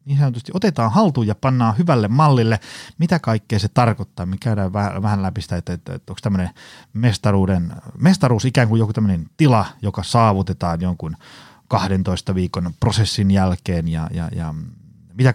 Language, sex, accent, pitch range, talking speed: Finnish, male, native, 90-125 Hz, 145 wpm